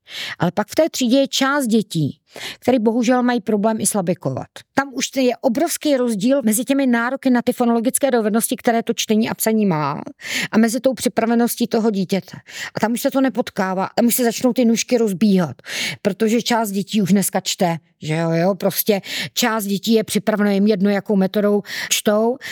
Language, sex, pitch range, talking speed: Czech, female, 185-230 Hz, 185 wpm